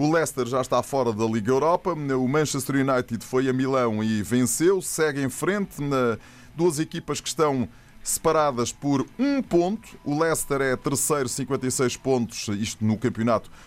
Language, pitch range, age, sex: Portuguese, 115-145 Hz, 20-39, male